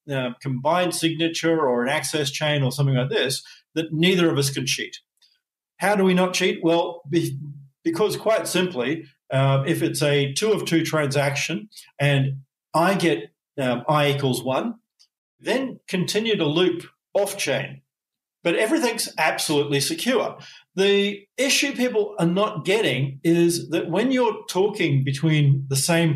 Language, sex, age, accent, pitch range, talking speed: English, male, 50-69, Australian, 140-175 Hz, 150 wpm